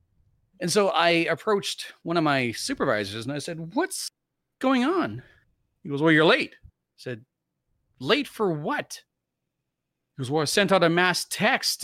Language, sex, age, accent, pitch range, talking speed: English, male, 40-59, American, 115-170 Hz, 165 wpm